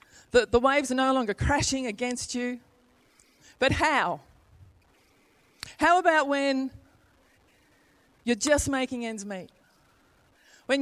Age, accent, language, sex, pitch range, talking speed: 40-59, Australian, English, female, 235-295 Hz, 110 wpm